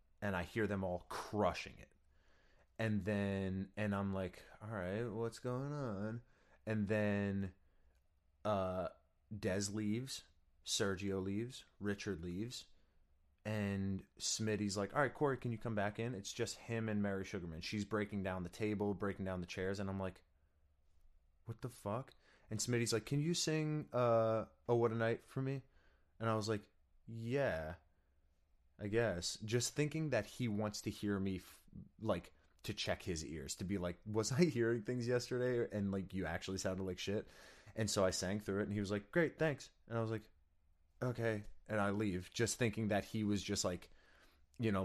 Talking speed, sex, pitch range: 180 wpm, male, 90-110 Hz